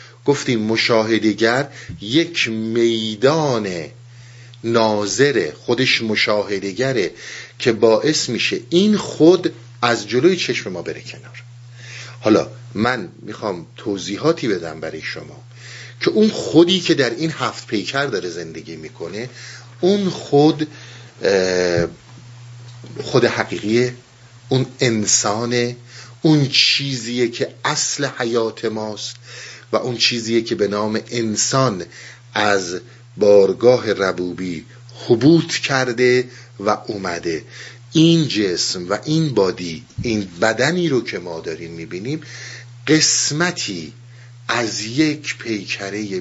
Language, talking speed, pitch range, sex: Persian, 100 wpm, 110-130 Hz, male